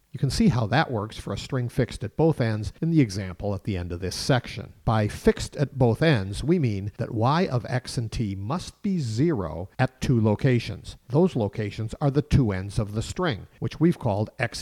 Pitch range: 100-145 Hz